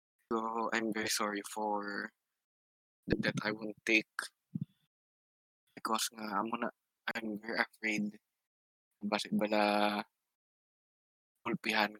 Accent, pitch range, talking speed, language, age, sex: native, 105-115 Hz, 100 wpm, Filipino, 20-39, male